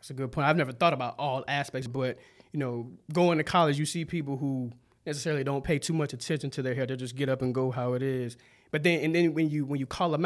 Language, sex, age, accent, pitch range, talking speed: English, male, 20-39, American, 130-170 Hz, 280 wpm